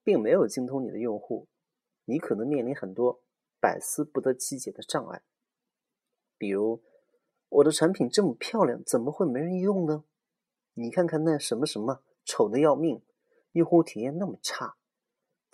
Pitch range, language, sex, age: 125-205 Hz, Chinese, male, 30-49